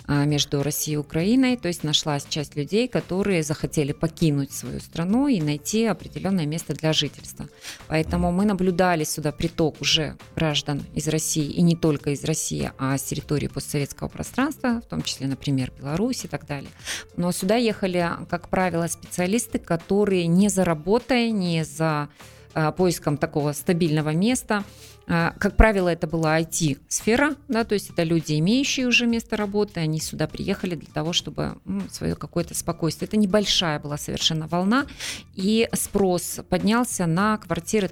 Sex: female